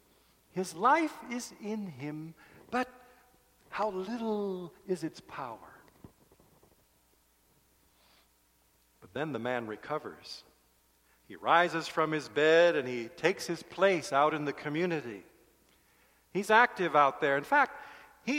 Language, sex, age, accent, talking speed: English, male, 50-69, American, 120 wpm